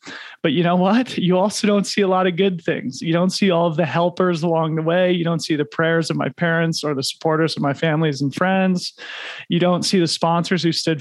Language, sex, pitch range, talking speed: English, male, 150-175 Hz, 250 wpm